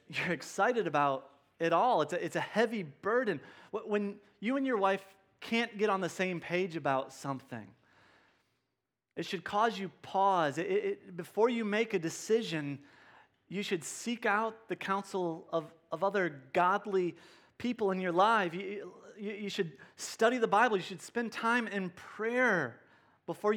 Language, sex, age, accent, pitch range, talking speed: English, male, 30-49, American, 170-220 Hz, 160 wpm